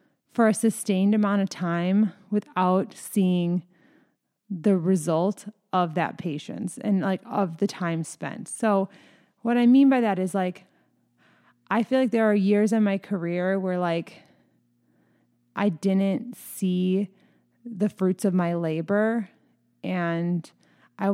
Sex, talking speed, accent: female, 135 wpm, American